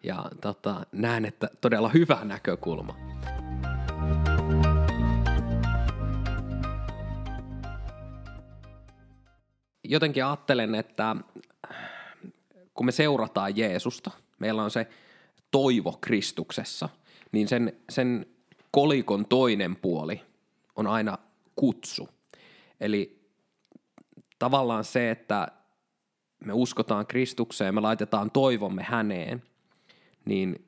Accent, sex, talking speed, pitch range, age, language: native, male, 75 wpm, 100-125 Hz, 20-39, Finnish